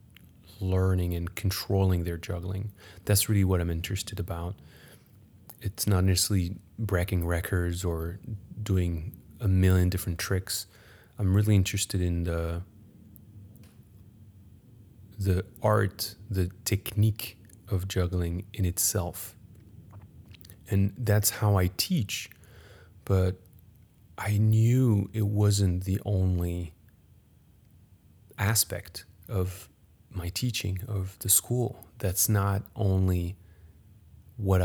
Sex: male